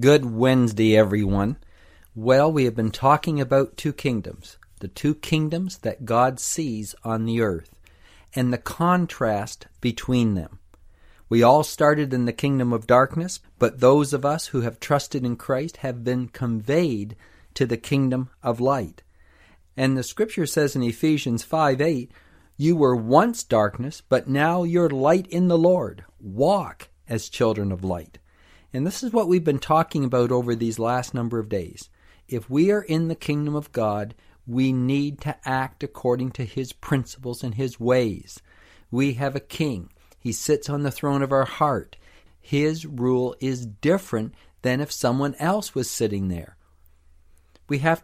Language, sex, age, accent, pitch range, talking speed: English, male, 50-69, American, 110-150 Hz, 165 wpm